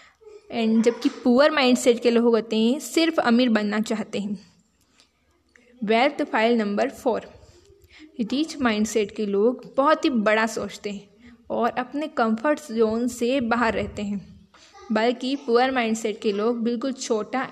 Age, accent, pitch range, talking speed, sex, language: 10-29, native, 220-255 Hz, 140 wpm, female, Hindi